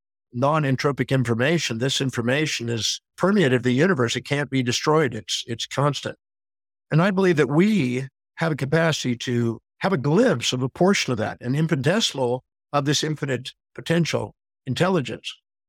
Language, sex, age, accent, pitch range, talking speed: English, male, 50-69, American, 125-165 Hz, 150 wpm